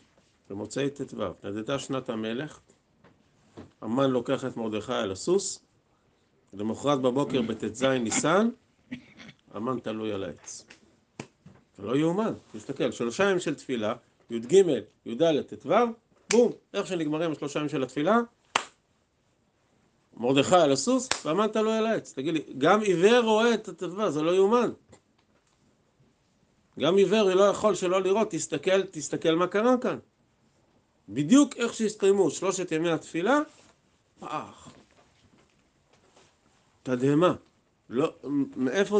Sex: male